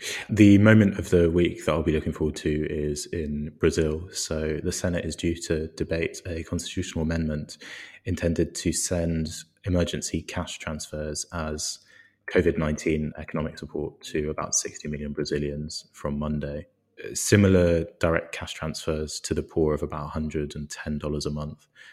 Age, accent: 20-39, British